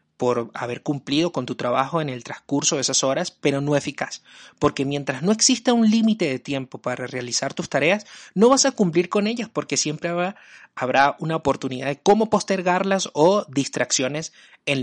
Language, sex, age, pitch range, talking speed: Spanish, male, 30-49, 130-180 Hz, 180 wpm